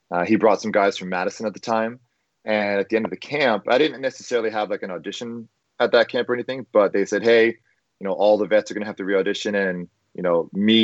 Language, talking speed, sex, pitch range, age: English, 265 wpm, male, 100-120 Hz, 30-49